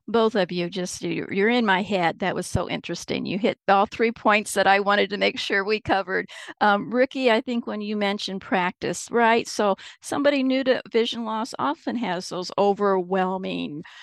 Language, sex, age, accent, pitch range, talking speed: English, female, 50-69, American, 200-250 Hz, 190 wpm